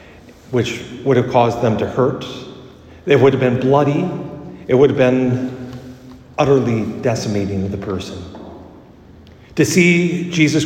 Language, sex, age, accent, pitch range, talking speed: English, male, 50-69, American, 115-150 Hz, 130 wpm